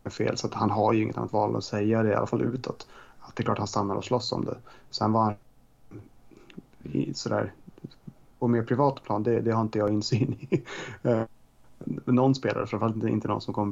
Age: 20-39